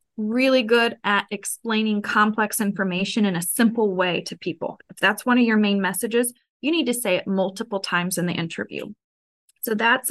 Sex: female